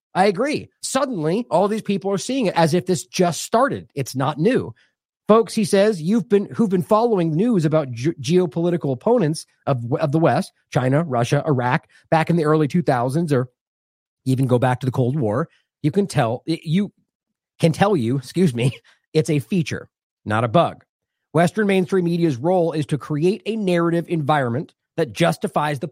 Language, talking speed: English, 180 wpm